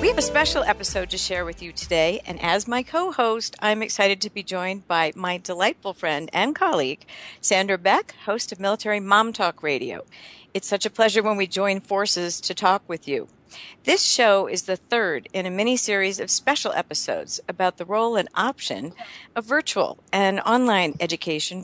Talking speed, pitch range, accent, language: 185 wpm, 165-210 Hz, American, English